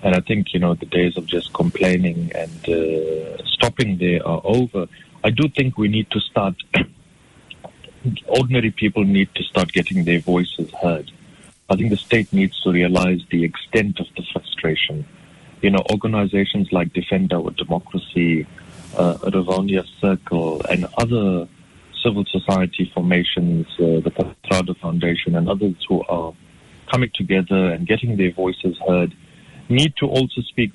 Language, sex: English, male